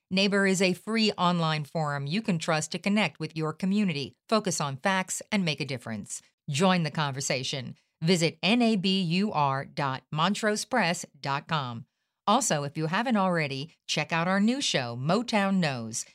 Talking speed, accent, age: 140 wpm, American, 50-69